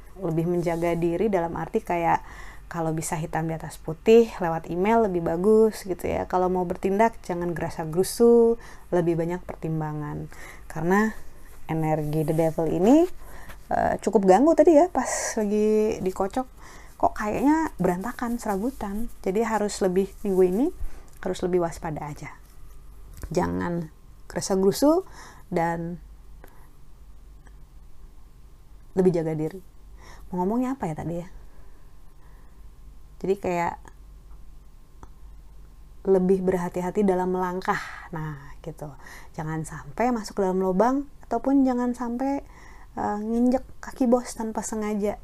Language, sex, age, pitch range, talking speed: Indonesian, female, 20-39, 170-230 Hz, 115 wpm